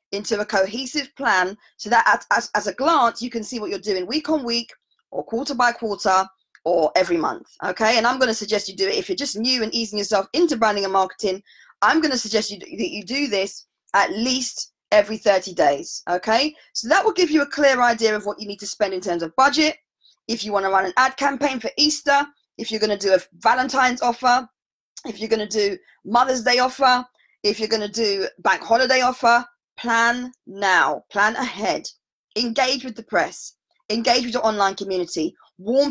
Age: 20-39